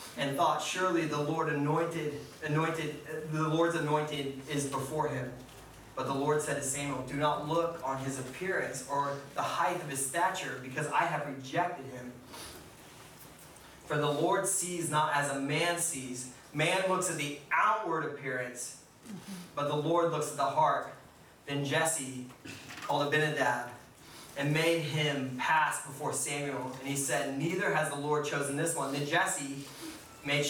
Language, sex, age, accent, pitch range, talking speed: English, male, 30-49, American, 140-160 Hz, 160 wpm